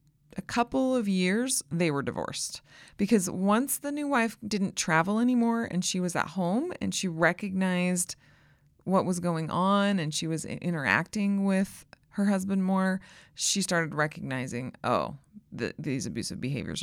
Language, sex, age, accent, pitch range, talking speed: English, female, 30-49, American, 150-200 Hz, 155 wpm